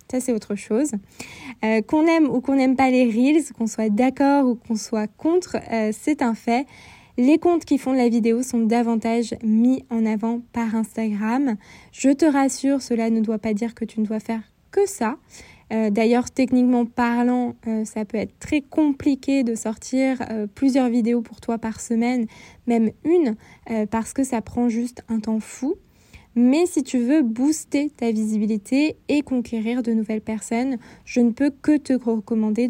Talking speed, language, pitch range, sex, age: 185 wpm, French, 225-265 Hz, female, 20-39